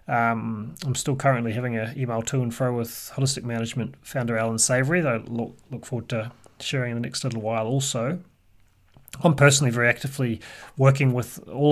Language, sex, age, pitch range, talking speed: English, male, 30-49, 105-130 Hz, 180 wpm